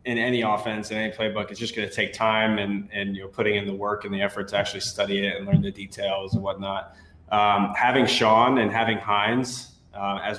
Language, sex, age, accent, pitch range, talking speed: English, male, 20-39, American, 100-120 Hz, 235 wpm